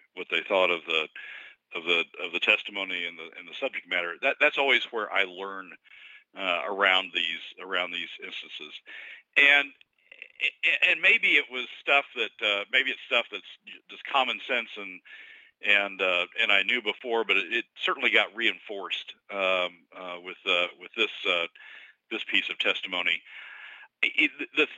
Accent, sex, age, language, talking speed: American, male, 50-69, English, 165 wpm